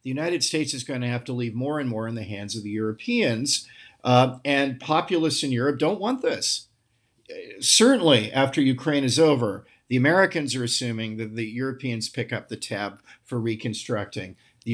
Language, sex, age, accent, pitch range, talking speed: English, male, 50-69, American, 110-140 Hz, 185 wpm